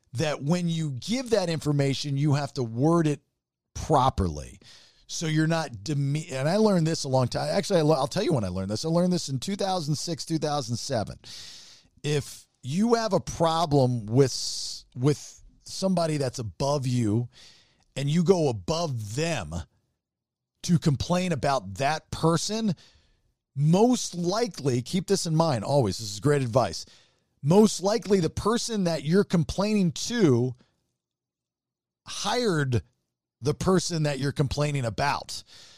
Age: 40-59